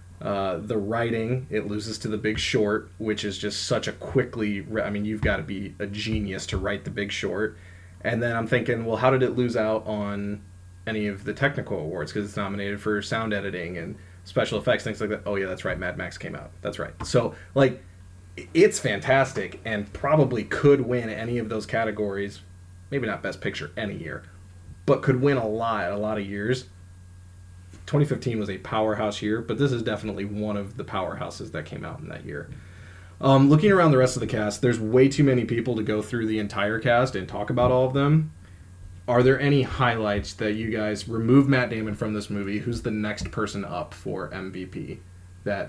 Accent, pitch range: American, 95-115 Hz